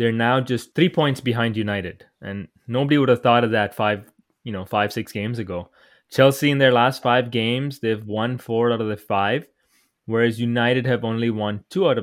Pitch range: 110-135 Hz